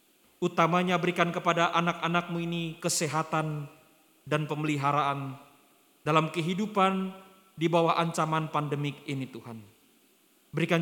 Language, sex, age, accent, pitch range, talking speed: Indonesian, male, 40-59, native, 150-175 Hz, 95 wpm